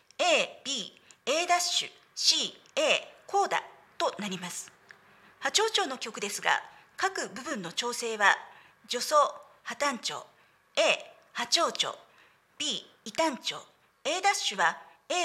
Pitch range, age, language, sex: 240-360 Hz, 50-69, Japanese, female